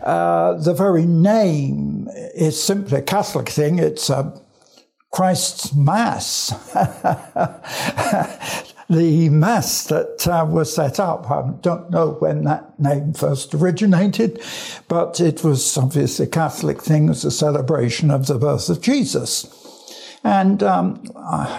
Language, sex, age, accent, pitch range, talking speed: English, male, 60-79, British, 145-185 Hz, 130 wpm